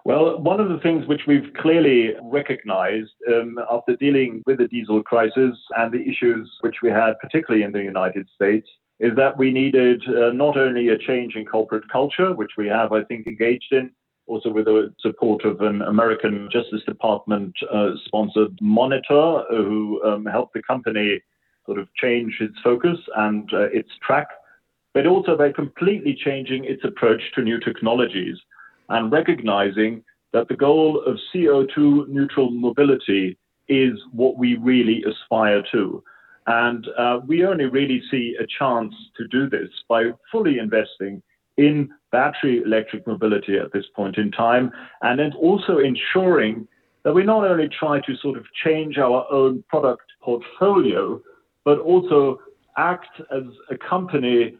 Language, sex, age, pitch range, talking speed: English, male, 40-59, 110-145 Hz, 155 wpm